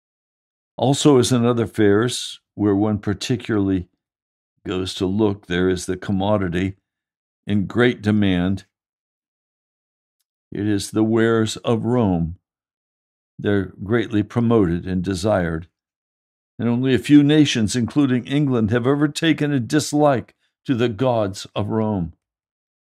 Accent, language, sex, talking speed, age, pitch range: American, English, male, 120 wpm, 60-79, 100-135 Hz